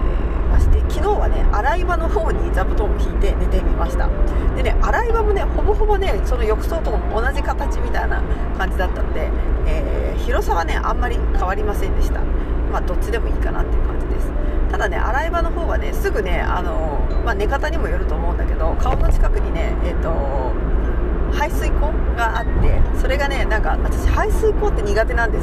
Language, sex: Japanese, female